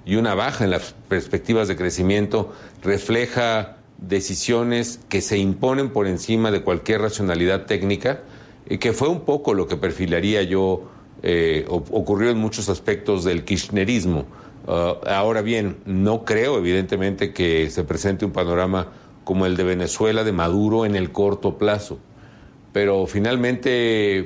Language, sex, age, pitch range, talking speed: Spanish, male, 50-69, 95-115 Hz, 140 wpm